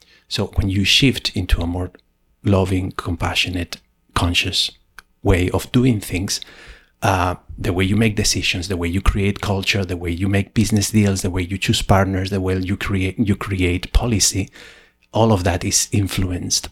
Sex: male